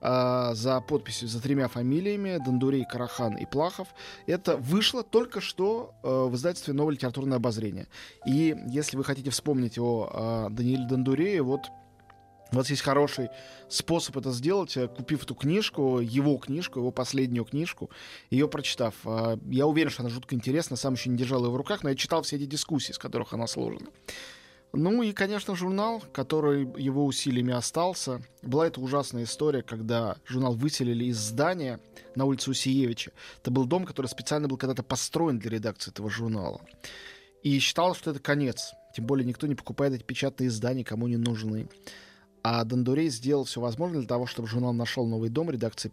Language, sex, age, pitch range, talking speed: Russian, male, 20-39, 120-150 Hz, 170 wpm